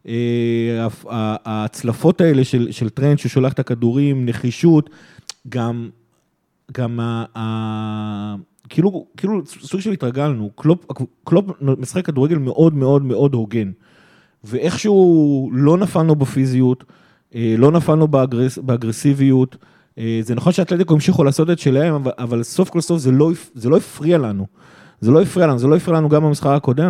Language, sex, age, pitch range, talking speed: Hebrew, male, 30-49, 120-150 Hz, 135 wpm